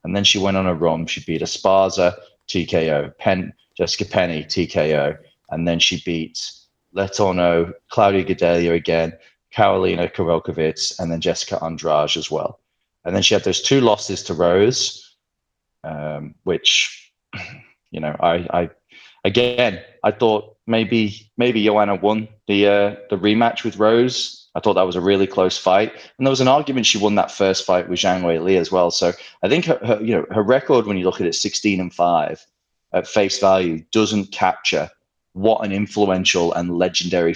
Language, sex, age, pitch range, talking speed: English, male, 20-39, 85-105 Hz, 175 wpm